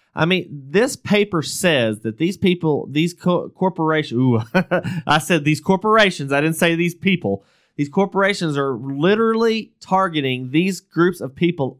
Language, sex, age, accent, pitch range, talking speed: English, male, 30-49, American, 130-175 Hz, 155 wpm